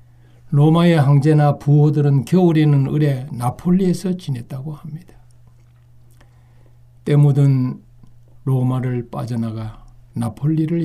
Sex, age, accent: male, 60-79, native